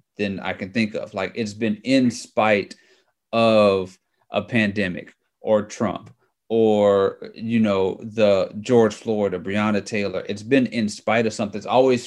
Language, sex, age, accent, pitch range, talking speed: English, male, 30-49, American, 105-125 Hz, 155 wpm